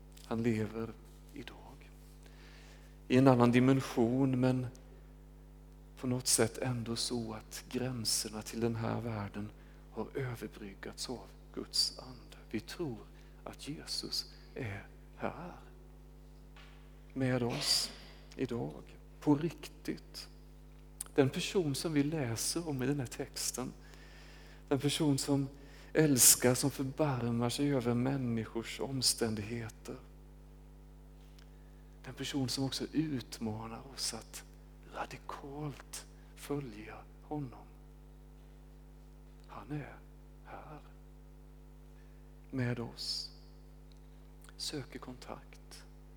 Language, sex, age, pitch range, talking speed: Swedish, male, 40-59, 115-140 Hz, 95 wpm